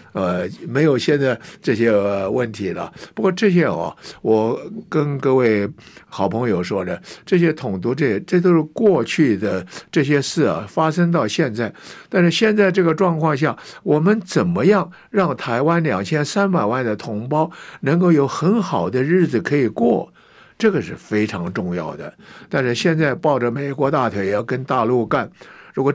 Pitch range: 125-180 Hz